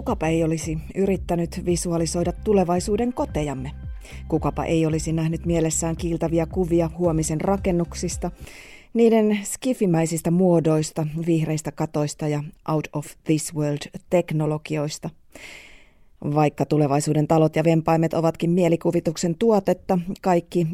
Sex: female